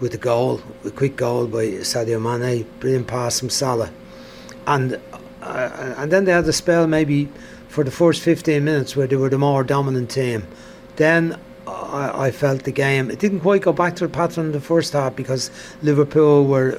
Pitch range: 120-145 Hz